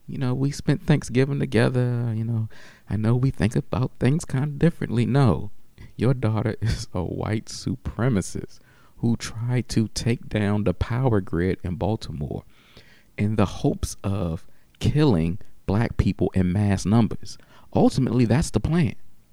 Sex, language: male, English